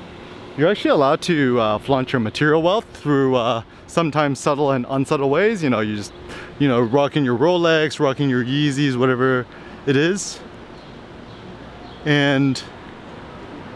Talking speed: 140 wpm